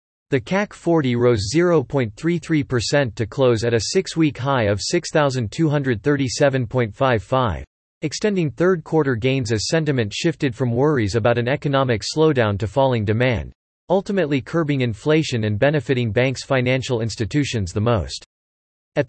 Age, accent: 40-59, American